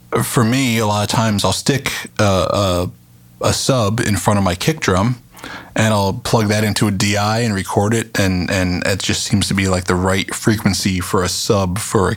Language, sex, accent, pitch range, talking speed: English, male, American, 95-115 Hz, 215 wpm